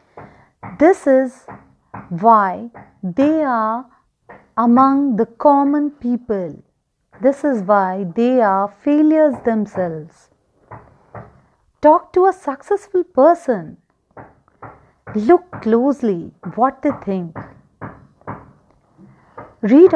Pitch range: 205-280 Hz